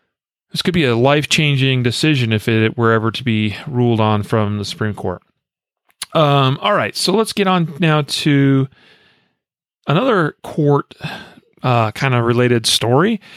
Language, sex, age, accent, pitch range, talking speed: English, male, 40-59, American, 120-160 Hz, 150 wpm